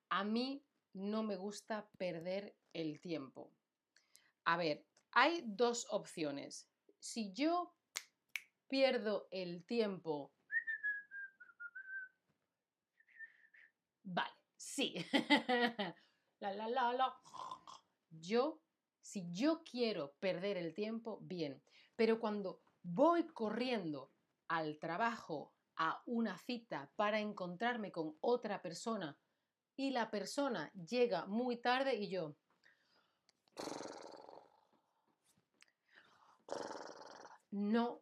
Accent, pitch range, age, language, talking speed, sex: Spanish, 190-260 Hz, 30-49, Spanish, 80 wpm, female